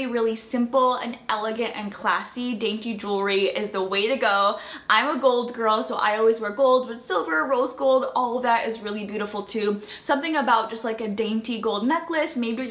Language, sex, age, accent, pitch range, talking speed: English, female, 10-29, American, 210-255 Hz, 195 wpm